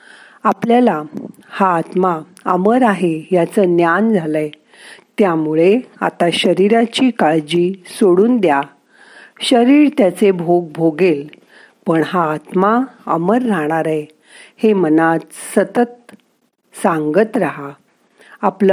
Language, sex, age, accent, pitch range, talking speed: Marathi, female, 50-69, native, 160-220 Hz, 95 wpm